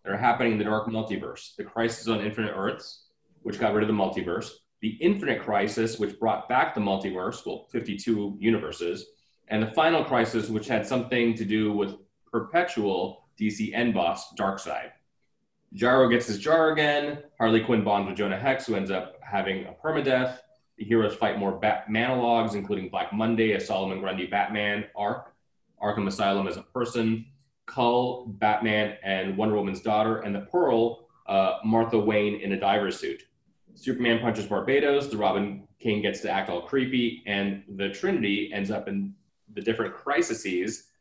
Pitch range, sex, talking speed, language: 100-120 Hz, male, 170 wpm, English